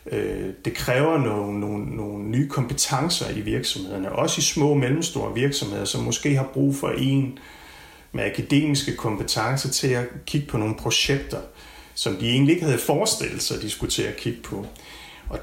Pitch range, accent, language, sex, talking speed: 105-145 Hz, native, Danish, male, 165 wpm